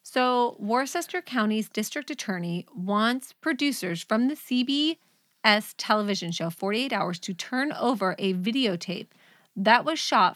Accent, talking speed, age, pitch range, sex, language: American, 125 wpm, 30-49, 190-245 Hz, female, English